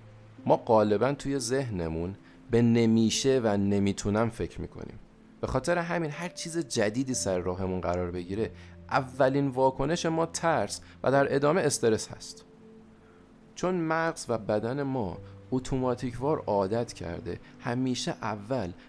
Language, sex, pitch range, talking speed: Persian, male, 100-130 Hz, 120 wpm